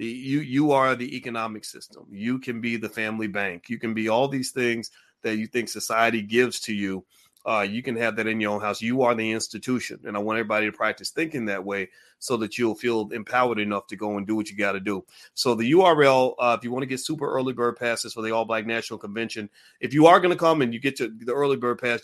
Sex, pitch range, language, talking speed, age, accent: male, 105-120 Hz, English, 260 wpm, 30-49, American